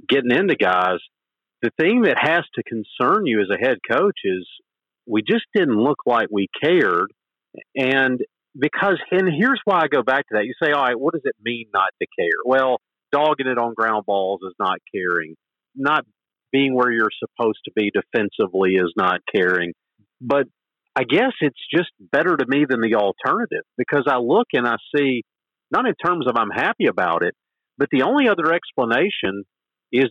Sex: male